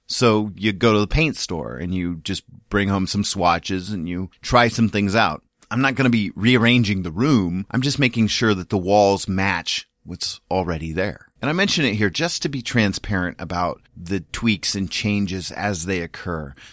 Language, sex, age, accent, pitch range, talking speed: English, male, 30-49, American, 90-115 Hz, 200 wpm